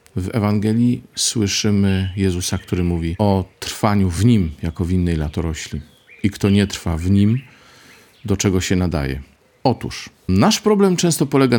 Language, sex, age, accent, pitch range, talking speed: Polish, male, 40-59, native, 90-110 Hz, 150 wpm